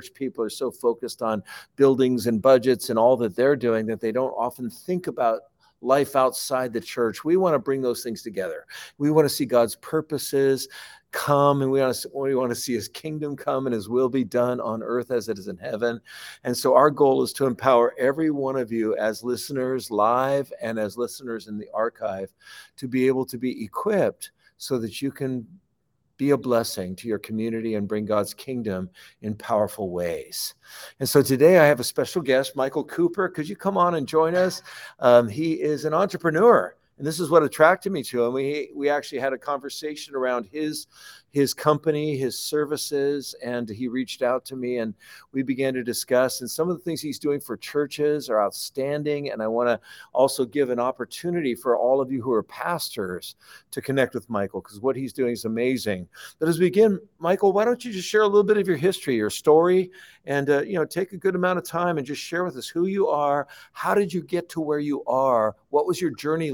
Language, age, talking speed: English, 50-69, 215 wpm